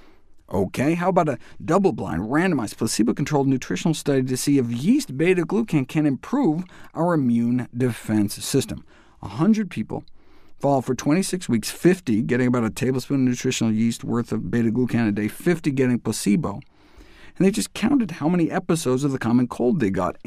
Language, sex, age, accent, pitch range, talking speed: English, male, 50-69, American, 115-170 Hz, 165 wpm